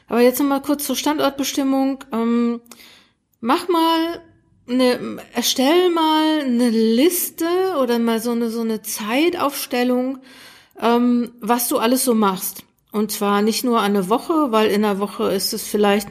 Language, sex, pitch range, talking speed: German, female, 220-275 Hz, 155 wpm